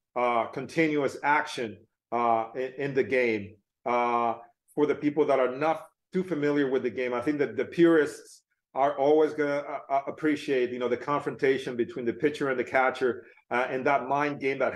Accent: American